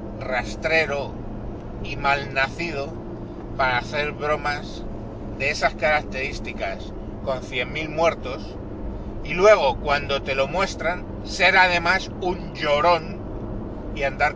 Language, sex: Spanish, male